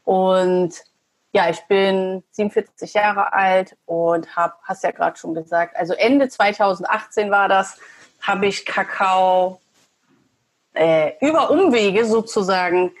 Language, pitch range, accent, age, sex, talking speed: German, 195-250 Hz, German, 30-49, female, 120 wpm